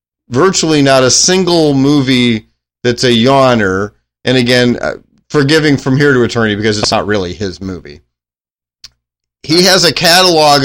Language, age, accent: English, 30-49, American